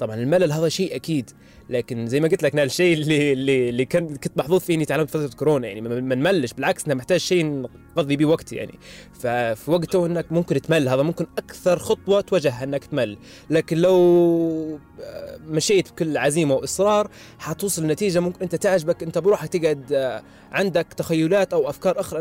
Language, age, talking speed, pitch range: Arabic, 20-39, 170 wpm, 135-175 Hz